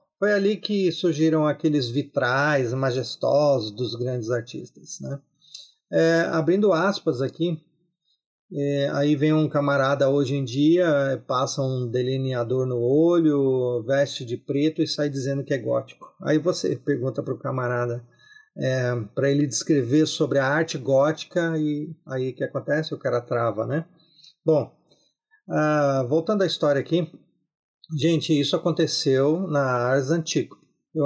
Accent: Brazilian